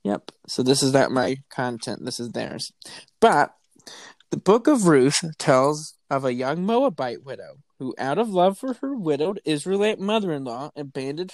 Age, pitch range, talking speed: 20-39, 135-195 Hz, 165 wpm